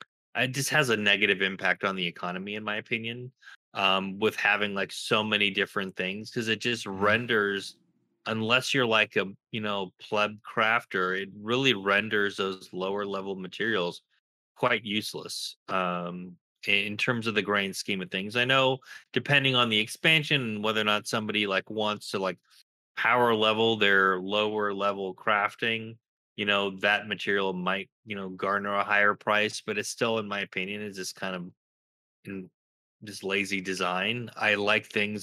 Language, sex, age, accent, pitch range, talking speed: English, male, 20-39, American, 95-110 Hz, 170 wpm